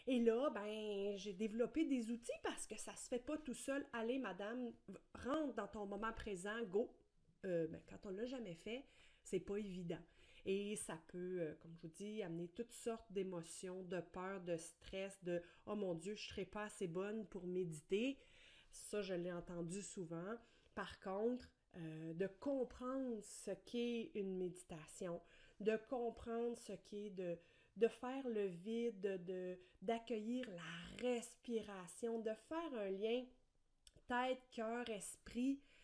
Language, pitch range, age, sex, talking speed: French, 190-240 Hz, 30-49, female, 155 wpm